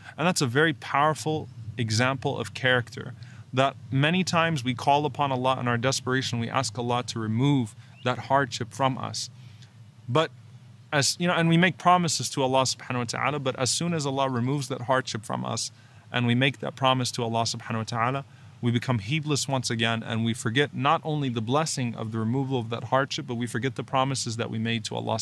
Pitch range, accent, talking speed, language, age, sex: 115-135 Hz, American, 210 wpm, English, 30-49, male